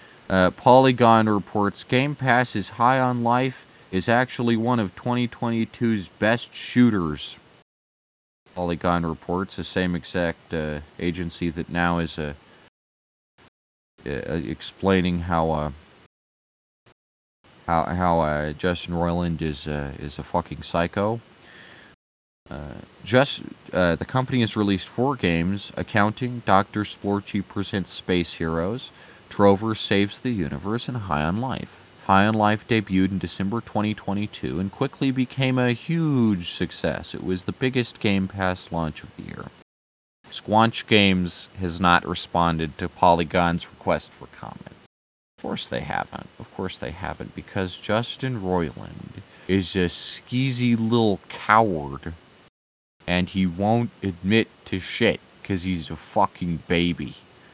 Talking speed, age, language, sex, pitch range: 130 wpm, 20-39, English, male, 85-110 Hz